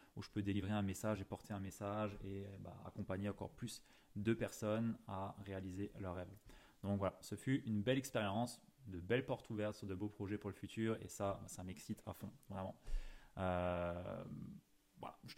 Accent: French